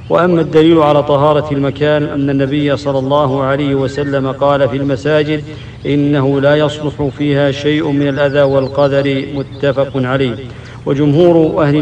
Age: 50-69